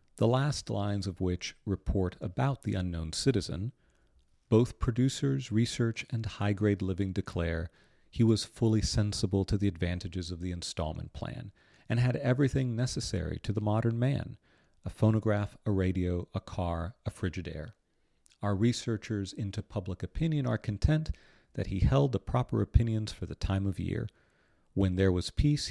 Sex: male